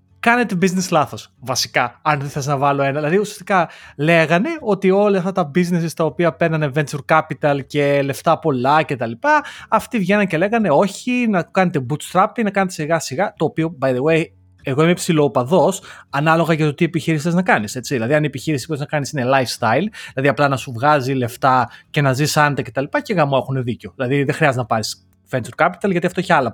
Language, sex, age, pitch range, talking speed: Greek, male, 30-49, 135-185 Hz, 210 wpm